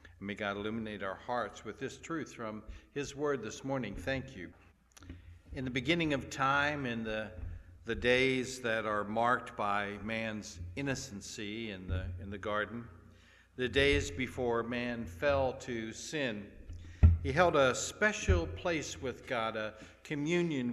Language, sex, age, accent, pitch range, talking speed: English, male, 60-79, American, 95-130 Hz, 150 wpm